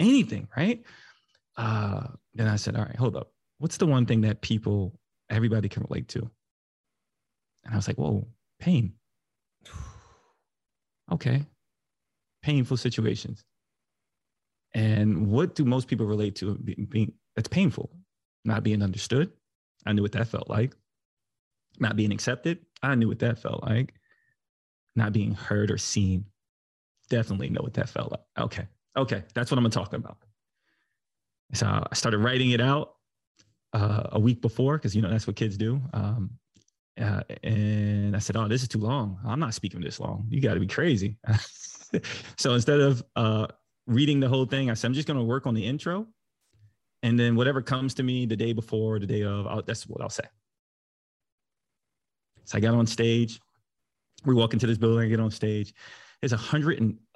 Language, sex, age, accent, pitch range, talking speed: English, male, 30-49, American, 105-130 Hz, 175 wpm